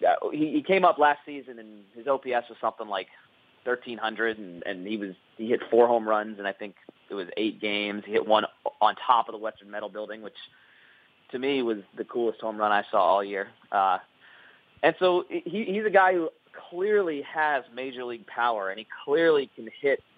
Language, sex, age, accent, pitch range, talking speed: English, male, 30-49, American, 110-140 Hz, 200 wpm